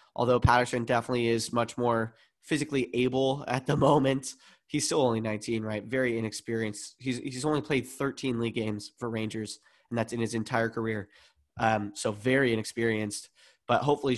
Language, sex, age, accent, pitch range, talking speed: English, male, 20-39, American, 115-130 Hz, 165 wpm